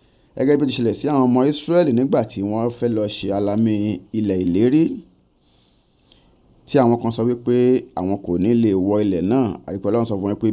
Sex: male